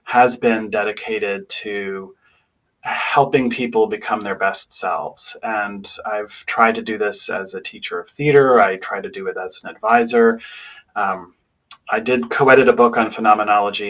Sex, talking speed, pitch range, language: male, 160 wpm, 105-125 Hz, English